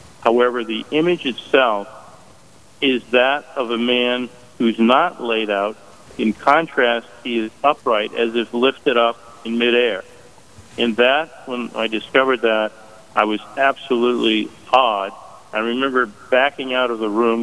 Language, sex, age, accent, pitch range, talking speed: English, male, 50-69, American, 110-125 Hz, 140 wpm